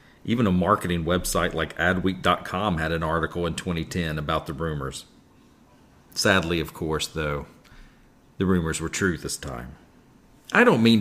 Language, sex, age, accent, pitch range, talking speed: English, male, 40-59, American, 85-110 Hz, 145 wpm